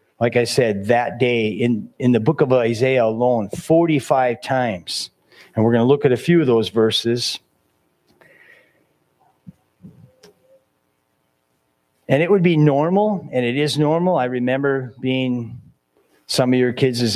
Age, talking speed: 40-59, 145 wpm